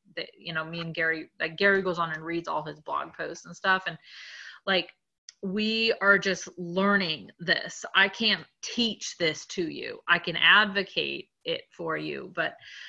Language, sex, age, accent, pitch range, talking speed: English, female, 30-49, American, 170-205 Hz, 175 wpm